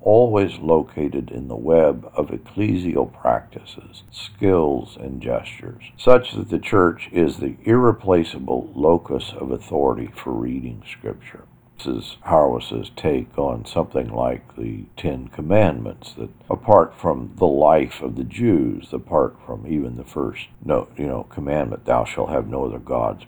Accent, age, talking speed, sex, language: American, 60-79, 145 wpm, male, English